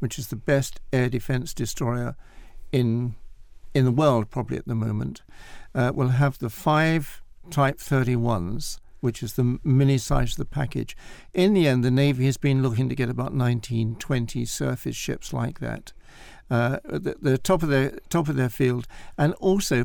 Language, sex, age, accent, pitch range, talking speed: English, male, 60-79, British, 125-150 Hz, 180 wpm